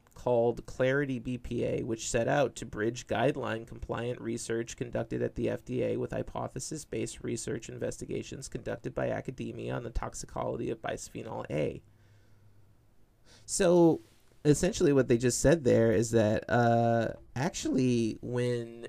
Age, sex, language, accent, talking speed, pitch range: 30-49, male, English, American, 130 wpm, 115-135 Hz